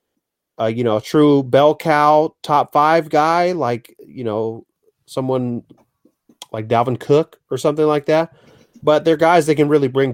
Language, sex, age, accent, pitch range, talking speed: English, male, 30-49, American, 115-145 Hz, 165 wpm